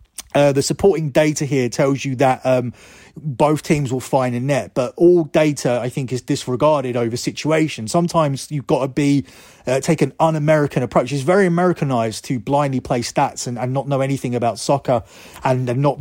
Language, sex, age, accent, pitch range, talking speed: English, male, 30-49, British, 125-150 Hz, 190 wpm